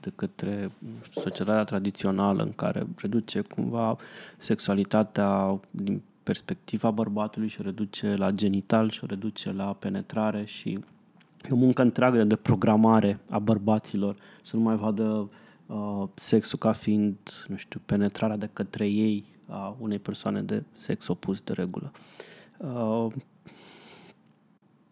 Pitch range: 105-130 Hz